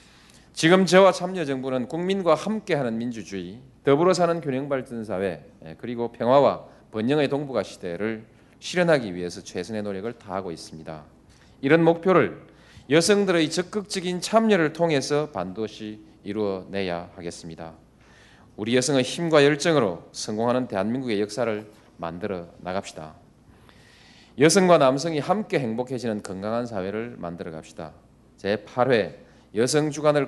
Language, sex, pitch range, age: Korean, male, 95-150 Hz, 40-59